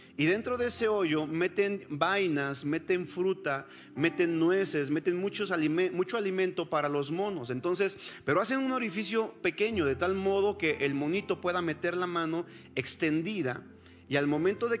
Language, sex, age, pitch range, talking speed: Spanish, male, 40-59, 165-225 Hz, 160 wpm